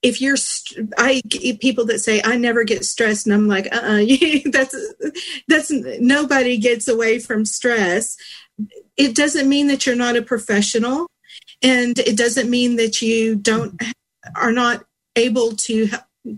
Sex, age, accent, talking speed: female, 50-69, American, 155 wpm